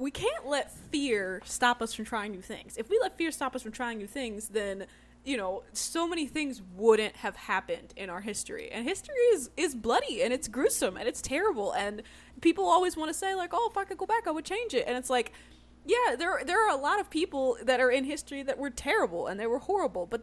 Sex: female